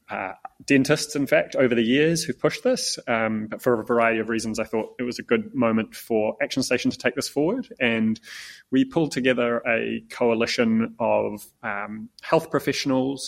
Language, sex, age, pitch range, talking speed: English, male, 20-39, 110-130 Hz, 185 wpm